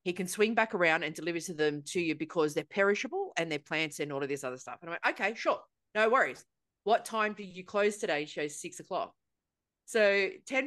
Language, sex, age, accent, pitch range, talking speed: English, female, 30-49, Australian, 165-230 Hz, 235 wpm